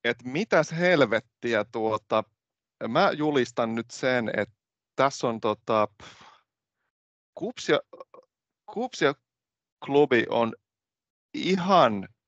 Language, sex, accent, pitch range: Finnish, male, native, 105-135 Hz